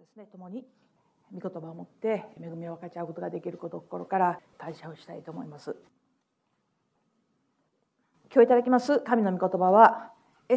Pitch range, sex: 185-240 Hz, female